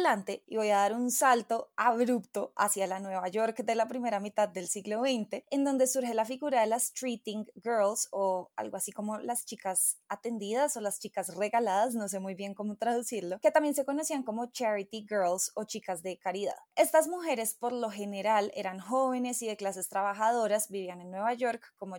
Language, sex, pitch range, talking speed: Spanish, female, 200-255 Hz, 195 wpm